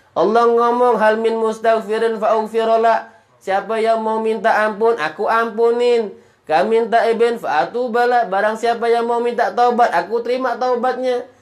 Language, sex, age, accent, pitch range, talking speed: Indonesian, male, 20-39, native, 170-245 Hz, 125 wpm